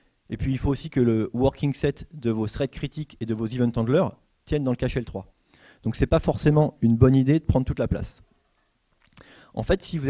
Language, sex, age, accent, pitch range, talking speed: English, male, 30-49, French, 120-150 Hz, 230 wpm